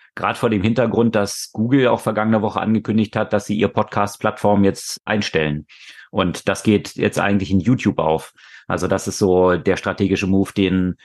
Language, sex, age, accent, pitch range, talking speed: German, male, 30-49, German, 95-110 Hz, 185 wpm